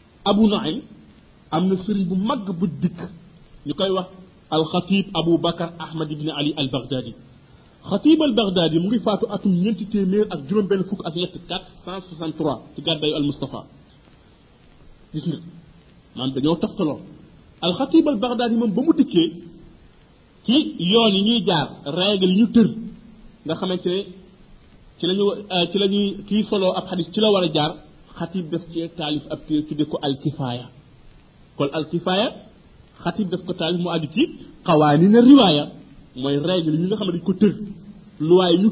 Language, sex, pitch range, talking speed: French, male, 160-210 Hz, 65 wpm